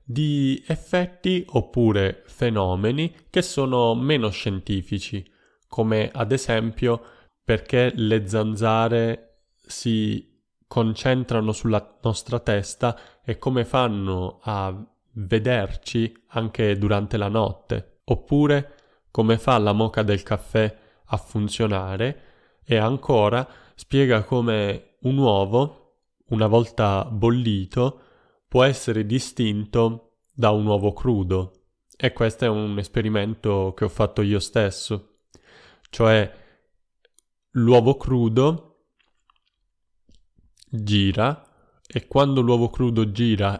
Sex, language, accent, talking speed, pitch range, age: male, Italian, native, 100 wpm, 105-125 Hz, 20-39